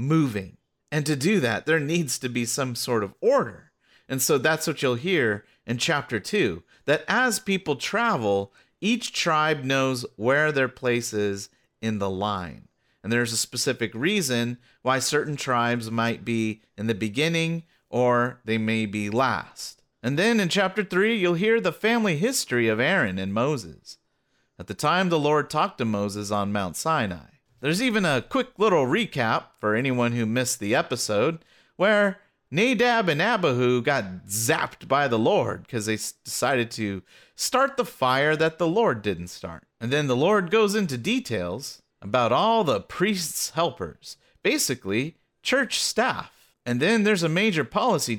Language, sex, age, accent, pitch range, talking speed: English, male, 40-59, American, 110-175 Hz, 165 wpm